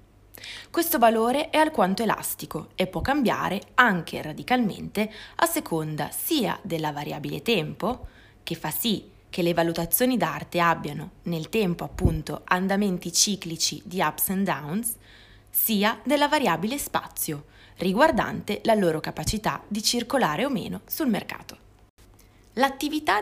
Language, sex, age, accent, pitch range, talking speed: Italian, female, 20-39, native, 165-225 Hz, 125 wpm